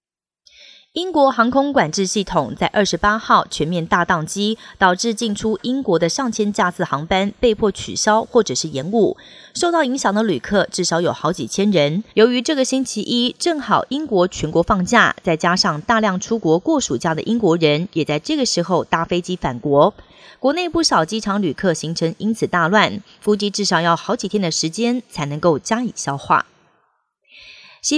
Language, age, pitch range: Chinese, 30-49, 170-230 Hz